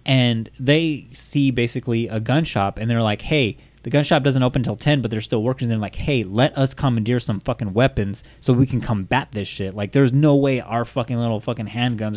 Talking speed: 230 wpm